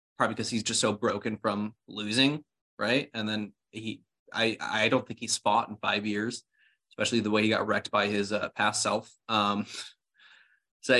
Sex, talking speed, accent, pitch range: male, 185 wpm, American, 110-125 Hz